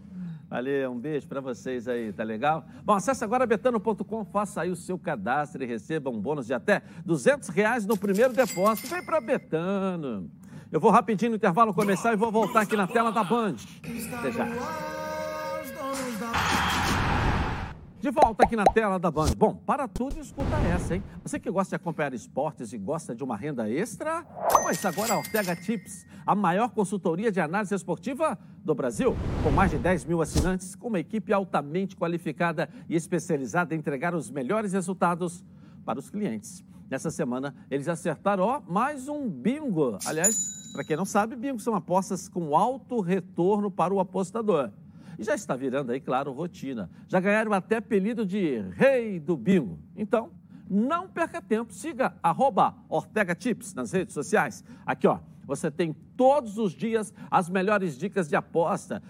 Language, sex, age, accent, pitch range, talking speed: Portuguese, male, 60-79, Brazilian, 170-220 Hz, 170 wpm